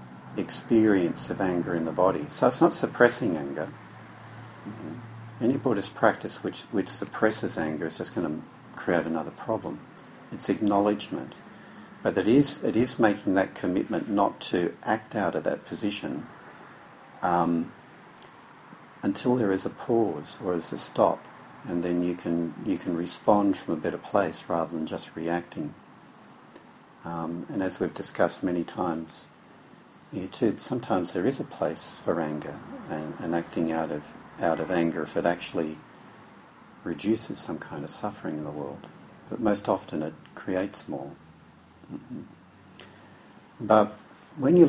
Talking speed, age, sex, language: 150 wpm, 60-79, male, English